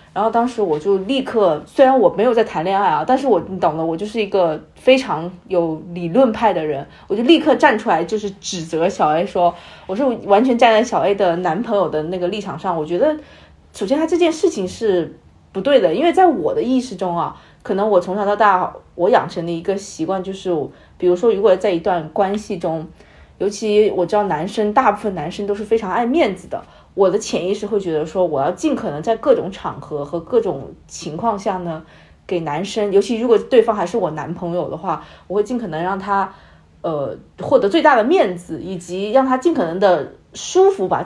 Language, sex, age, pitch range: Chinese, female, 20-39, 180-265 Hz